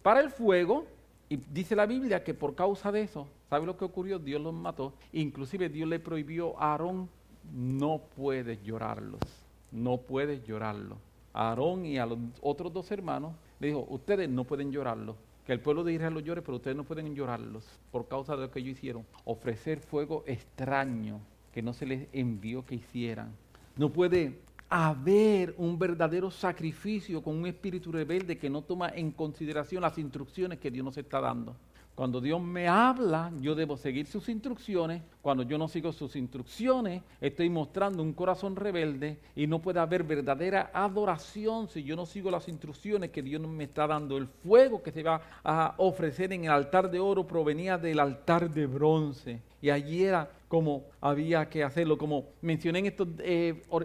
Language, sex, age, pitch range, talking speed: English, male, 50-69, 140-180 Hz, 180 wpm